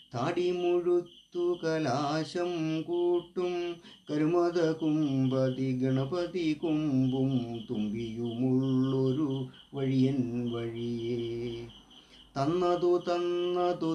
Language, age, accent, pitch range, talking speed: Malayalam, 30-49, native, 125-170 Hz, 50 wpm